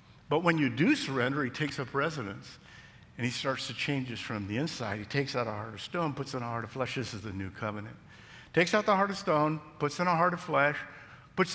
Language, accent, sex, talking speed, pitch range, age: English, American, male, 255 wpm, 120-155 Hz, 50-69